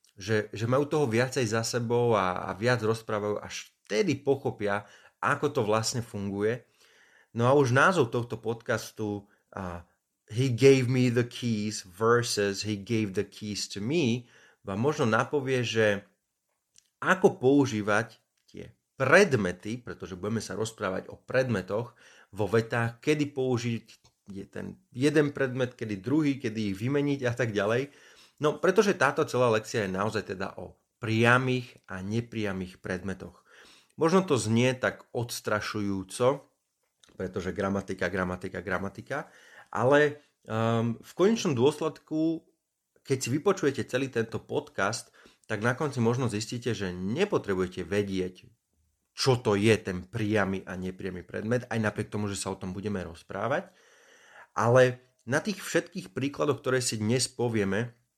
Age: 30-49